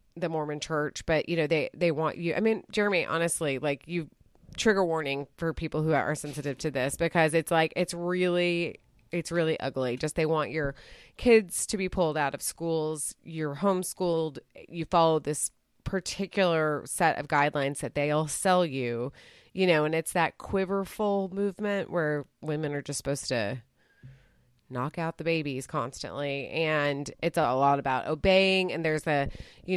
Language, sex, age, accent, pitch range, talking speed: English, female, 30-49, American, 140-175 Hz, 170 wpm